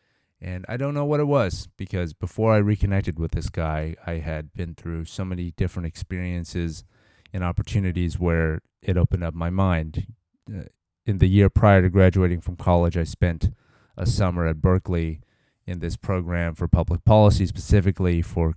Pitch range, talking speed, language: 85-100 Hz, 170 wpm, English